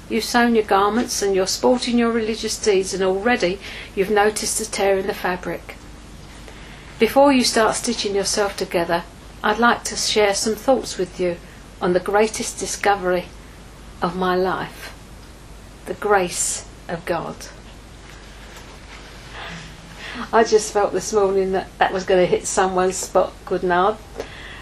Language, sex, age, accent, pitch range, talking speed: English, female, 50-69, British, 185-215 Hz, 140 wpm